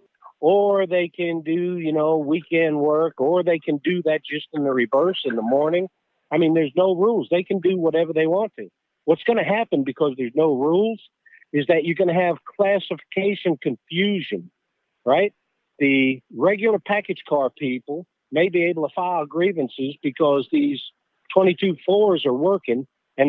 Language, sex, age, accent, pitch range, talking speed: English, male, 50-69, American, 155-195 Hz, 175 wpm